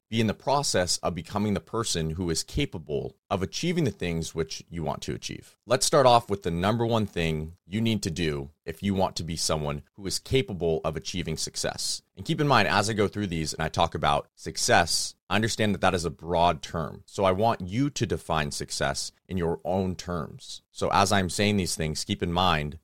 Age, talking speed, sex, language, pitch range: 30-49, 225 wpm, male, English, 80-110 Hz